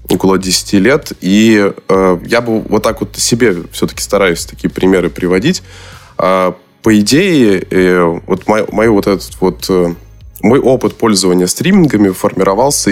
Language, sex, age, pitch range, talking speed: Russian, male, 20-39, 90-110 Hz, 150 wpm